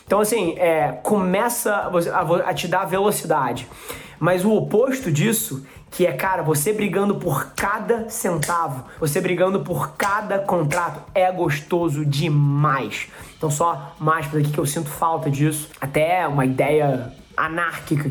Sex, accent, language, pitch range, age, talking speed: male, Brazilian, Portuguese, 155-205 Hz, 20-39, 135 wpm